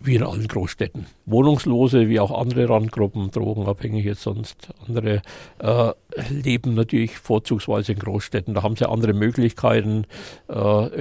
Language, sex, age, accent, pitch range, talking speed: German, male, 60-79, German, 105-125 Hz, 135 wpm